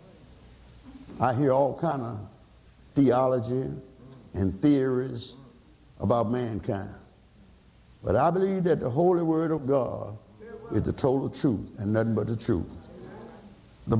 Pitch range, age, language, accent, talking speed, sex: 125-195 Hz, 60-79, English, American, 125 wpm, male